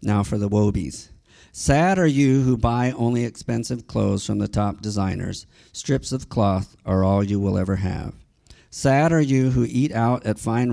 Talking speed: 185 wpm